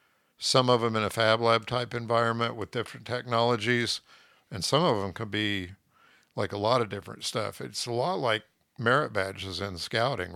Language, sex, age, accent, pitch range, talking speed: English, male, 50-69, American, 105-120 Hz, 185 wpm